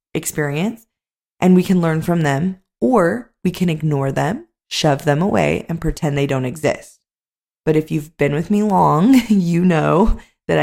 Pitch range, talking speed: 145-170 Hz, 170 wpm